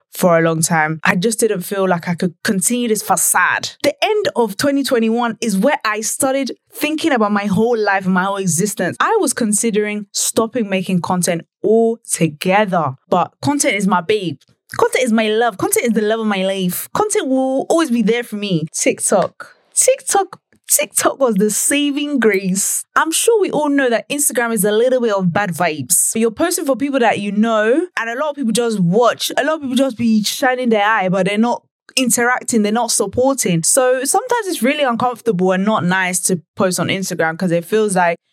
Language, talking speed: English, 200 wpm